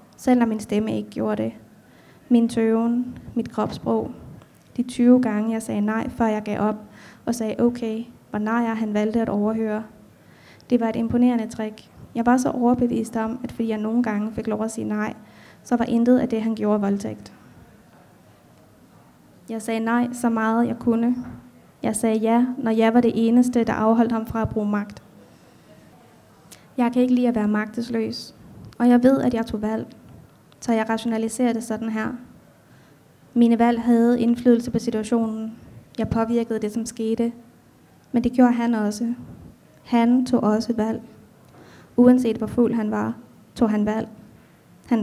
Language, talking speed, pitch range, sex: Danish, 170 wpm, 220-240 Hz, female